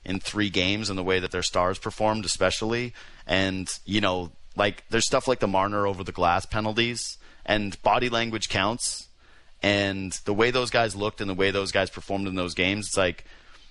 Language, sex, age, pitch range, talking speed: English, male, 30-49, 95-115 Hz, 195 wpm